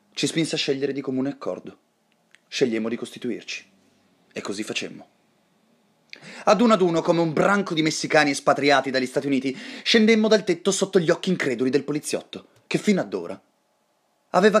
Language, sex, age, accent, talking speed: Italian, male, 30-49, native, 165 wpm